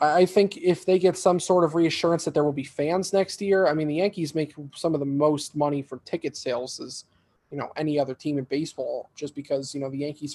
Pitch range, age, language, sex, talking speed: 140-170 Hz, 20-39, English, male, 250 wpm